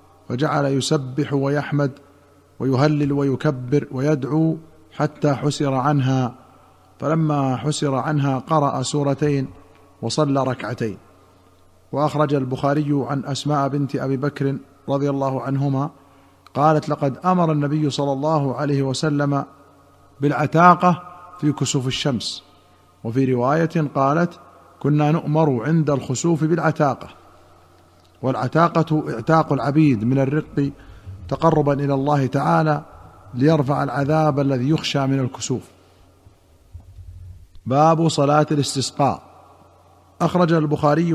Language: Arabic